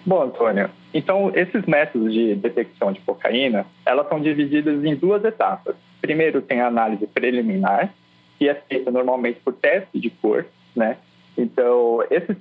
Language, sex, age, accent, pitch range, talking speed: Portuguese, male, 20-39, Brazilian, 110-170 Hz, 150 wpm